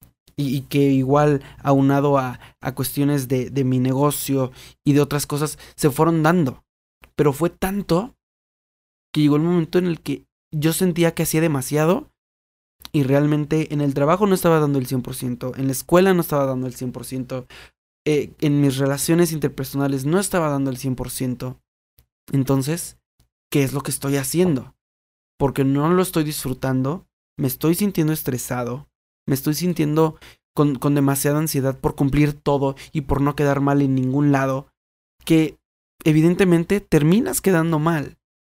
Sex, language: male, Spanish